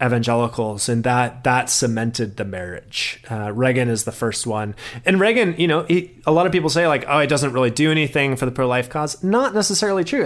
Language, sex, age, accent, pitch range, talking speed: English, male, 30-49, American, 120-145 Hz, 215 wpm